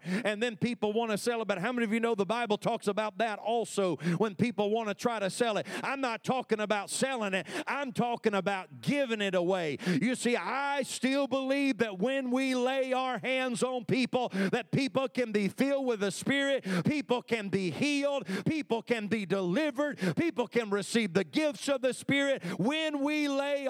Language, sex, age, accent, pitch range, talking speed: English, male, 50-69, American, 170-245 Hz, 200 wpm